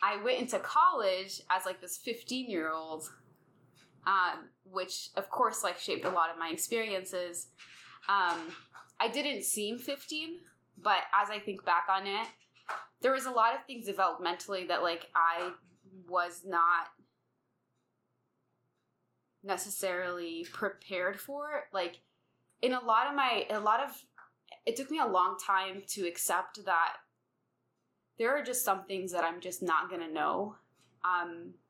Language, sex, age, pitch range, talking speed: English, female, 20-39, 170-215 Hz, 140 wpm